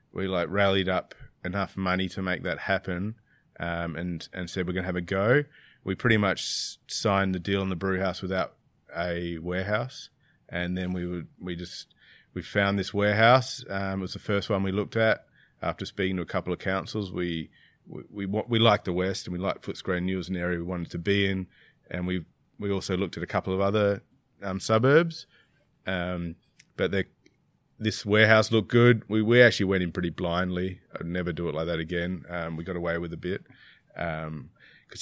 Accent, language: Australian, English